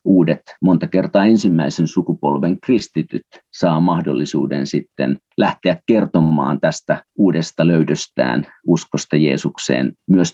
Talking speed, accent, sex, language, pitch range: 100 wpm, native, male, Finnish, 75-95 Hz